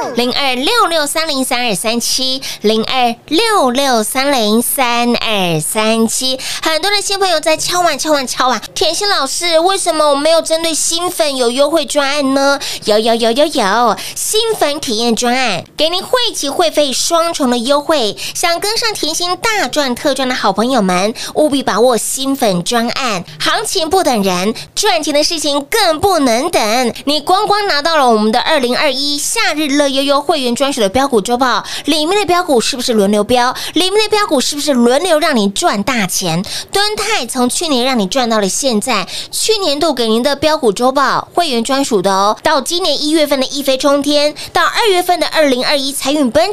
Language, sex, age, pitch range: Chinese, female, 20-39, 240-330 Hz